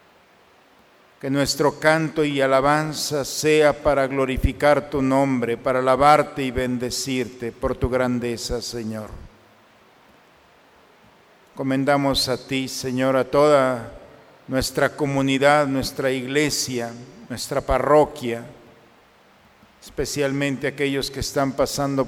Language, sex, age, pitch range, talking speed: Spanish, male, 50-69, 125-140 Hz, 95 wpm